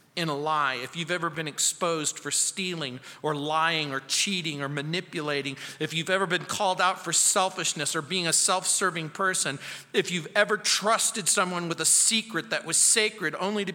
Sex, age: male, 40-59